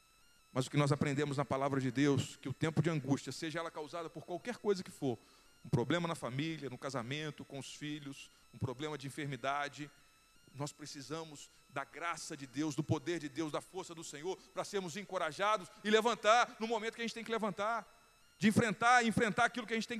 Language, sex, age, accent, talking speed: Portuguese, male, 40-59, Brazilian, 215 wpm